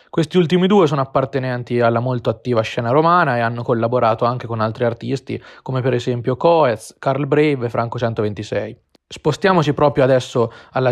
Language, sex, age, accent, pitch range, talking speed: Italian, male, 20-39, native, 120-145 Hz, 160 wpm